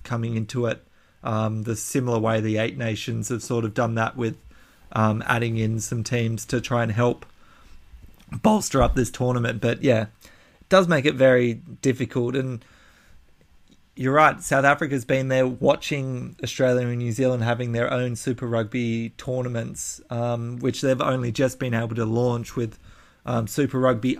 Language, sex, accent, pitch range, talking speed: English, male, Australian, 115-130 Hz, 170 wpm